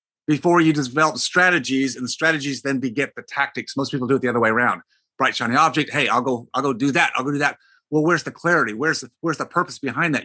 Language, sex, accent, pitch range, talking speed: English, male, American, 130-165 Hz, 260 wpm